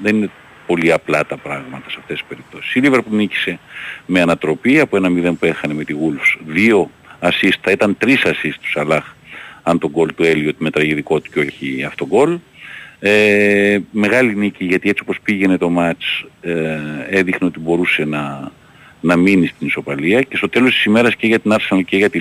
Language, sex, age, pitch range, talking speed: Greek, male, 50-69, 85-115 Hz, 195 wpm